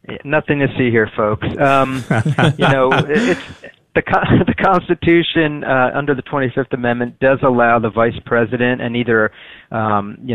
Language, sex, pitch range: English, male, 115-135 Hz